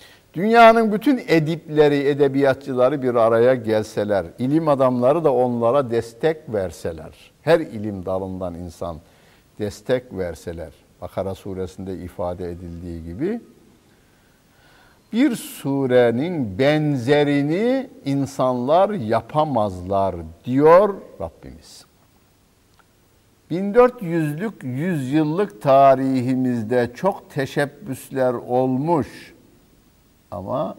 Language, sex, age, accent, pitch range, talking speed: Turkish, male, 60-79, native, 110-155 Hz, 75 wpm